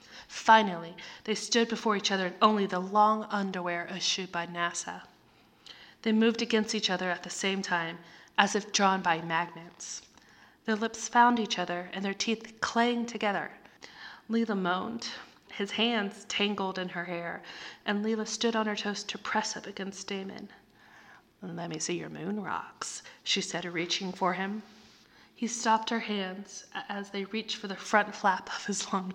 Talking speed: 170 wpm